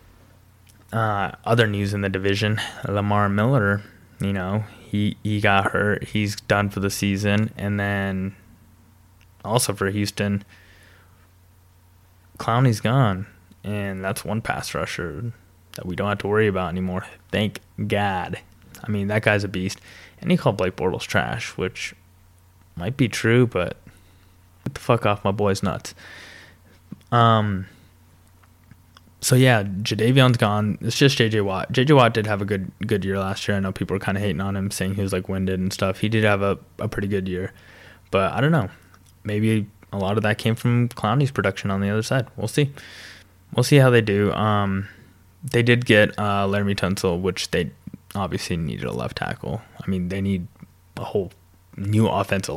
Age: 20-39